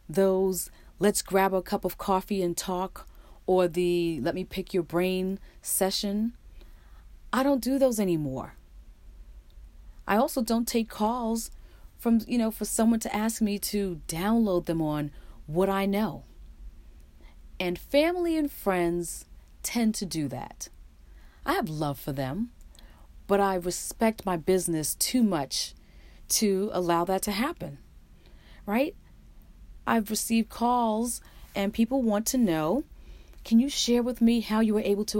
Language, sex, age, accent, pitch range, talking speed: English, female, 40-59, American, 150-225 Hz, 145 wpm